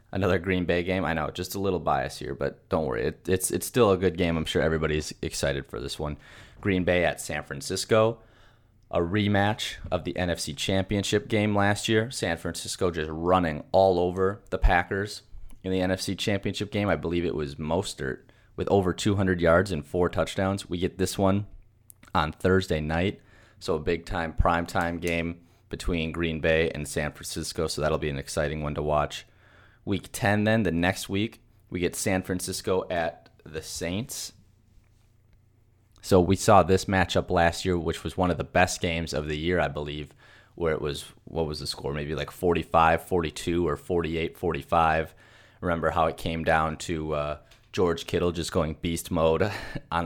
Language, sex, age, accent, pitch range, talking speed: English, male, 30-49, American, 80-100 Hz, 180 wpm